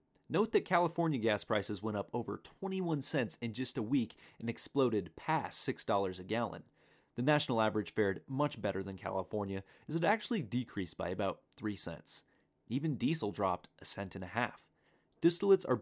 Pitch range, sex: 100-145 Hz, male